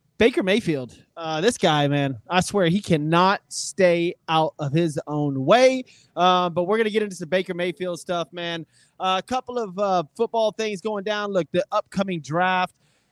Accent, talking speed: American, 185 wpm